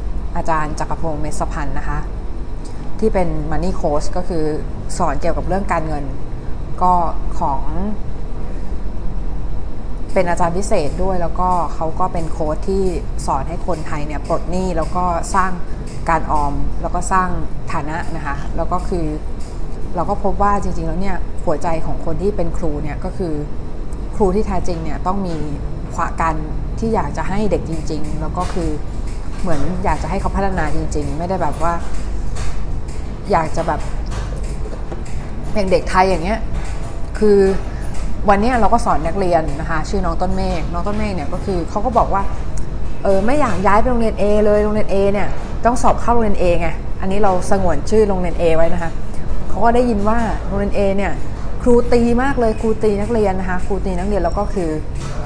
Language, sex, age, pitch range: Thai, female, 20-39, 160-200 Hz